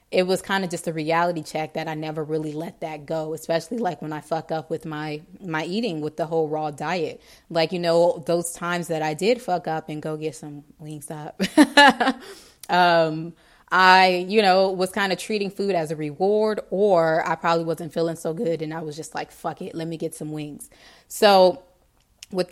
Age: 20-39